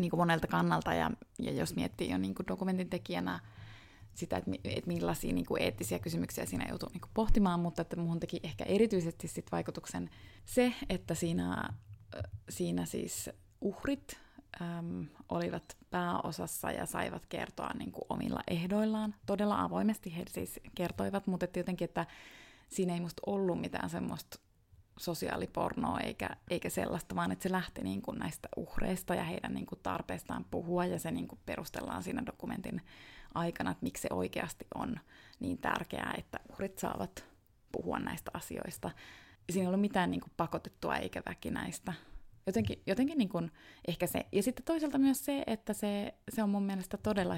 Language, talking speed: Finnish, 160 wpm